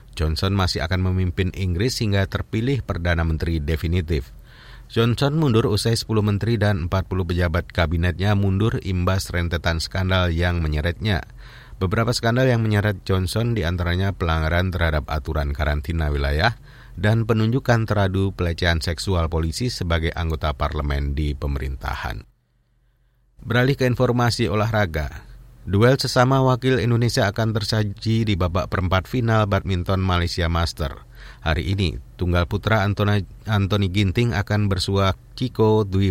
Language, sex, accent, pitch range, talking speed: Indonesian, male, native, 85-115 Hz, 125 wpm